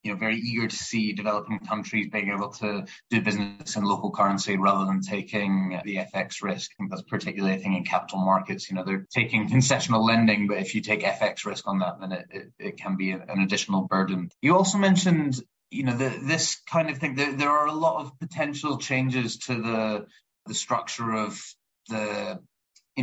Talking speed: 205 wpm